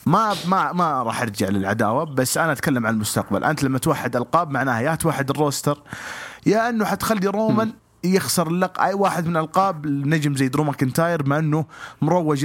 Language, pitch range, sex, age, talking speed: English, 130-170 Hz, male, 30-49, 170 wpm